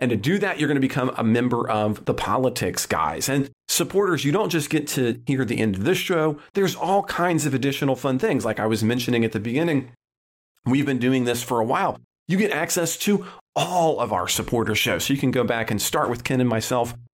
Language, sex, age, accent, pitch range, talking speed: English, male, 40-59, American, 110-150 Hz, 240 wpm